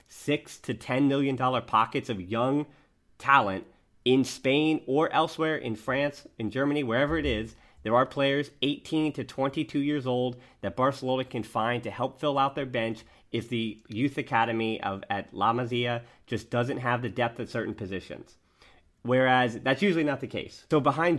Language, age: English, 30-49